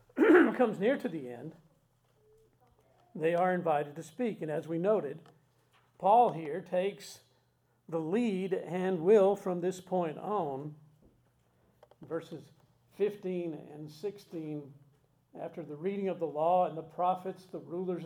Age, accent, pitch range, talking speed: 50-69, American, 155-200 Hz, 135 wpm